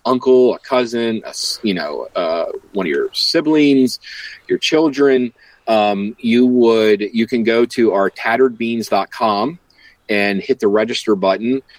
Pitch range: 100-130 Hz